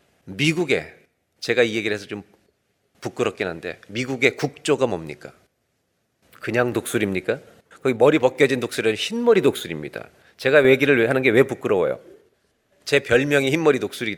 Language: Korean